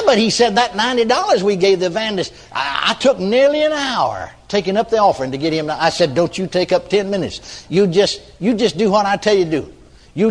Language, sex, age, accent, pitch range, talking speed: English, male, 60-79, American, 130-200 Hz, 245 wpm